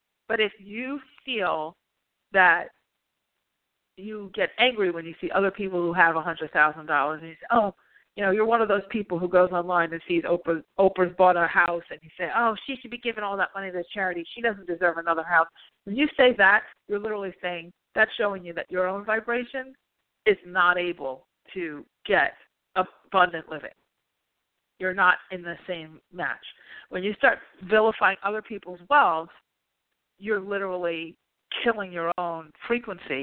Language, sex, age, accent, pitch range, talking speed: English, female, 40-59, American, 170-215 Hz, 170 wpm